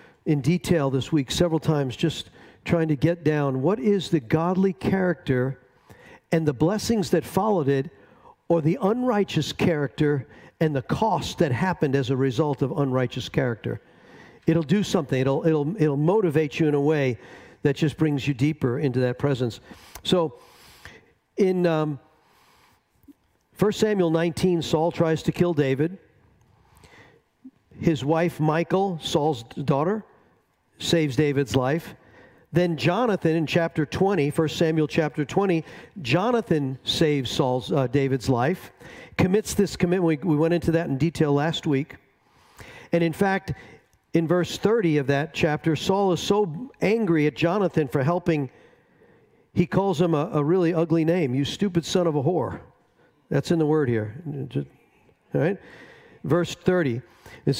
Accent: American